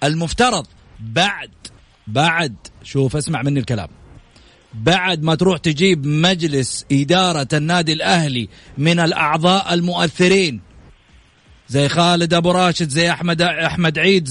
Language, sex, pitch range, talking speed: English, male, 140-210 Hz, 110 wpm